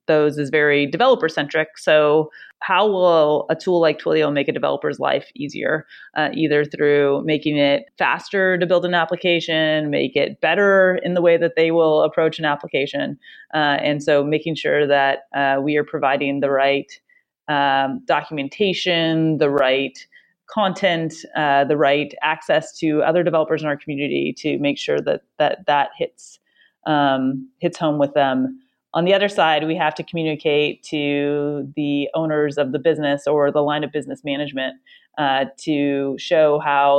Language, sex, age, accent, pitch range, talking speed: English, female, 30-49, American, 140-165 Hz, 165 wpm